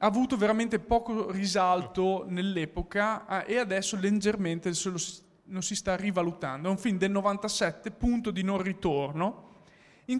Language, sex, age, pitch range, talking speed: Italian, male, 20-39, 170-205 Hz, 135 wpm